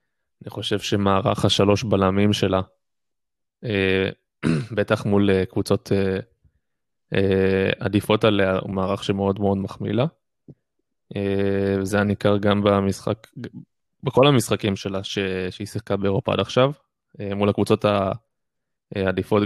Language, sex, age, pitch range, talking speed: Hebrew, male, 20-39, 100-110 Hz, 110 wpm